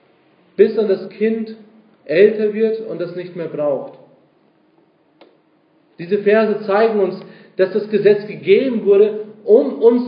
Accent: German